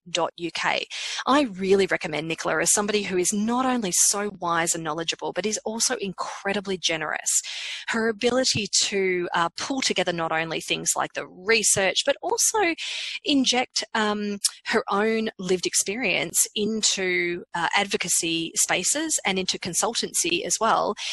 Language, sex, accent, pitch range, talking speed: English, female, Australian, 180-240 Hz, 135 wpm